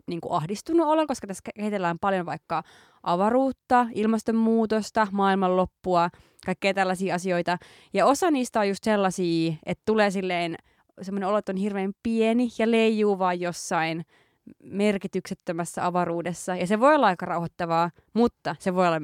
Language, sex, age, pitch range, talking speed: Finnish, female, 20-39, 175-215 Hz, 135 wpm